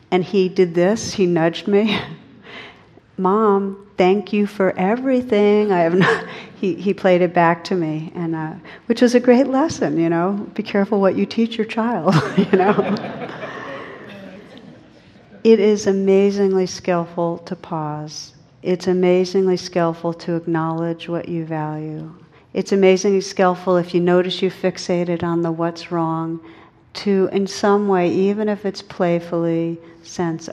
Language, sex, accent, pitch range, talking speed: English, female, American, 160-190 Hz, 145 wpm